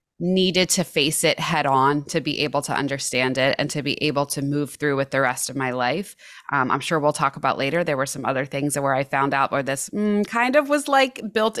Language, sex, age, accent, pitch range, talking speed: English, female, 20-39, American, 145-175 Hz, 255 wpm